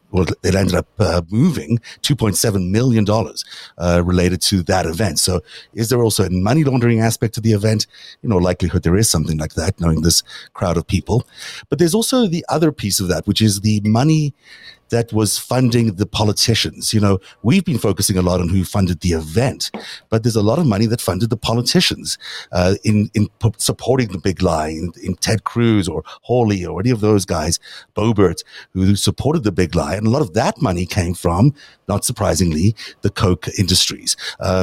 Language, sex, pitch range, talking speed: English, male, 90-115 Hz, 195 wpm